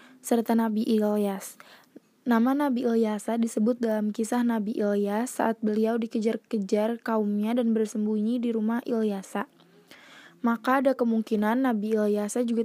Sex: female